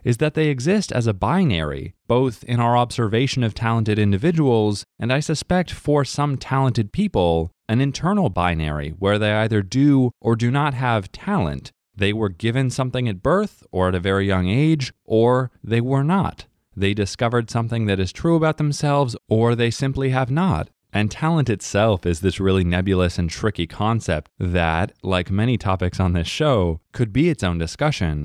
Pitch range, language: 95-135 Hz, English